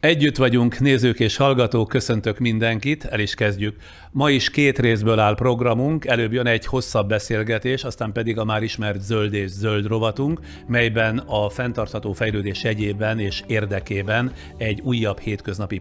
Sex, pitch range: male, 105-120 Hz